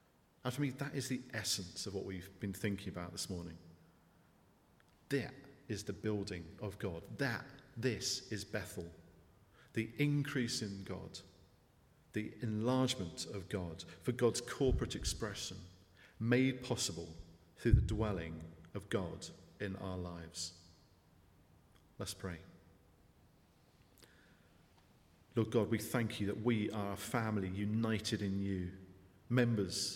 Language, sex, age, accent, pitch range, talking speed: English, male, 40-59, British, 95-115 Hz, 125 wpm